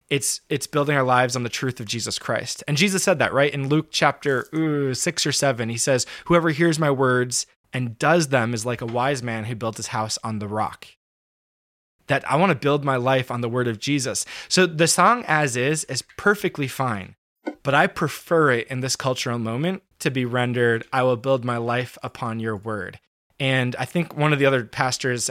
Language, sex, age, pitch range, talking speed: English, male, 20-39, 120-150 Hz, 215 wpm